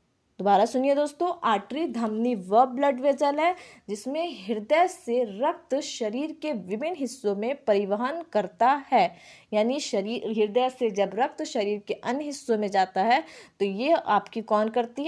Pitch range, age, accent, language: 210-280 Hz, 20-39, native, Hindi